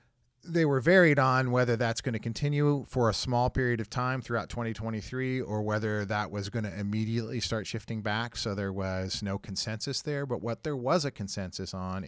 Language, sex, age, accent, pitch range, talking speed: English, male, 40-59, American, 100-125 Hz, 200 wpm